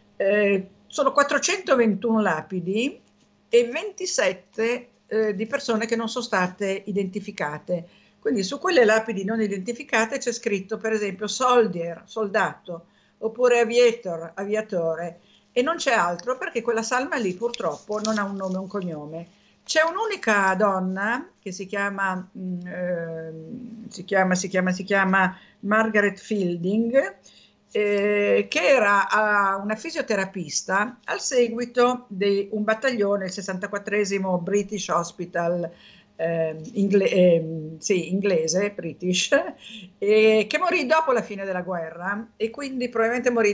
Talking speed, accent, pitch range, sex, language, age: 125 wpm, native, 185-230 Hz, female, Italian, 50-69